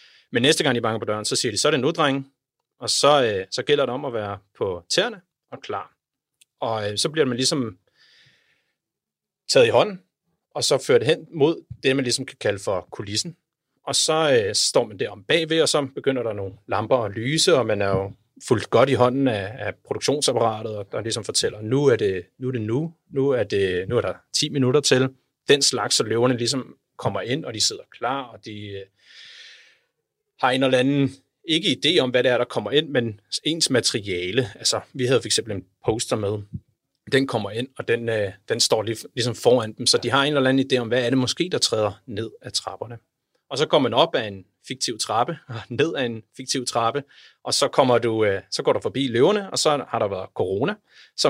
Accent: native